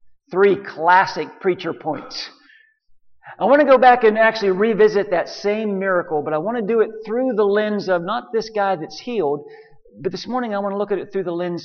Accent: American